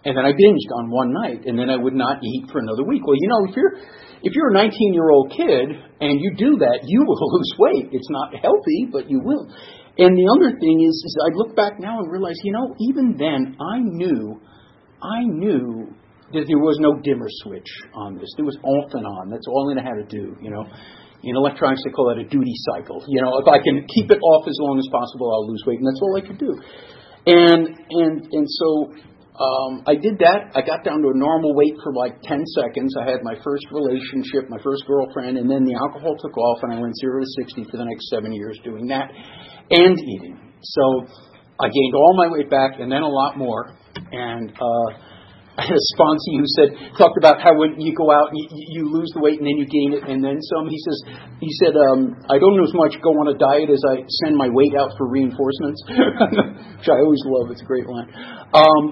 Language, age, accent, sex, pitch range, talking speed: English, 50-69, American, male, 130-170 Hz, 235 wpm